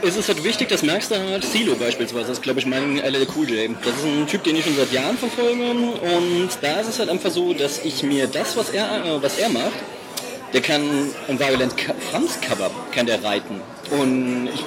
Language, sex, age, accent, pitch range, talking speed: German, male, 40-59, German, 145-205 Hz, 220 wpm